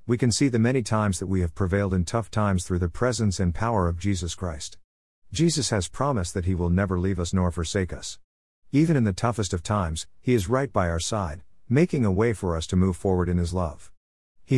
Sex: male